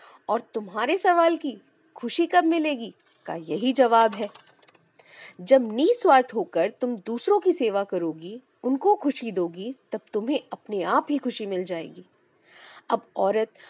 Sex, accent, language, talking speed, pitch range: female, native, Hindi, 140 wpm, 220-330 Hz